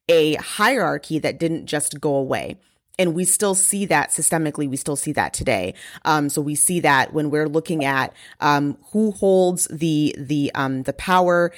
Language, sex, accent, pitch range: English, female, American, 145-170 Hz